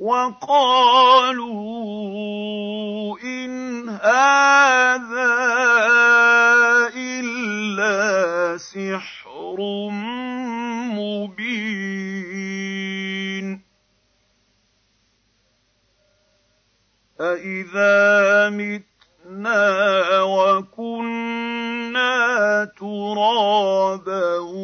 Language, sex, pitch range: Arabic, male, 175-210 Hz